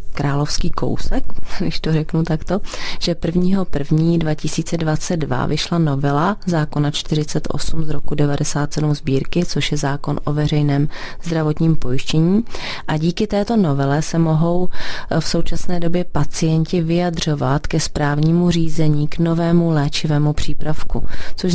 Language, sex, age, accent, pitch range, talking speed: Czech, female, 30-49, native, 145-170 Hz, 115 wpm